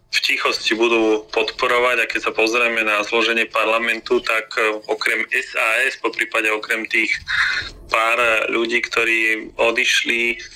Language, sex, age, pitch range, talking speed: Slovak, male, 30-49, 110-120 Hz, 125 wpm